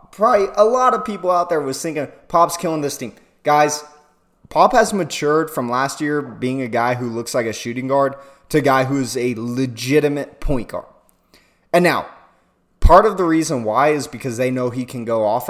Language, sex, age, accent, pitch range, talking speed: English, male, 20-39, American, 125-155 Hz, 200 wpm